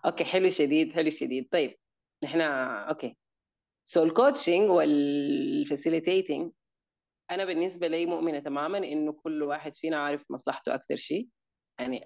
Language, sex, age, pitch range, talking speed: Arabic, female, 30-49, 145-175 Hz, 125 wpm